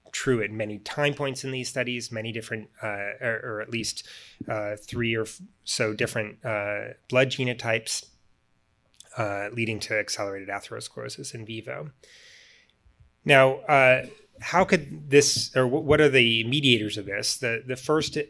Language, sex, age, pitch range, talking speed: English, male, 30-49, 110-130 Hz, 155 wpm